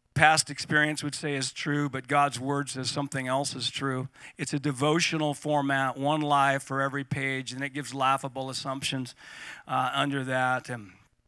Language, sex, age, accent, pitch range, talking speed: English, male, 50-69, American, 125-150 Hz, 170 wpm